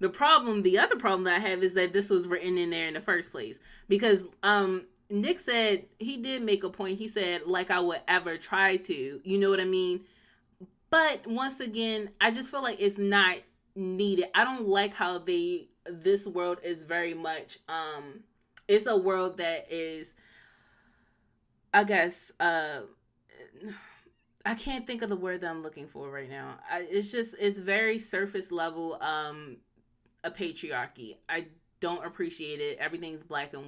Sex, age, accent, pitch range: female, 20-39, American, 160-200 Hz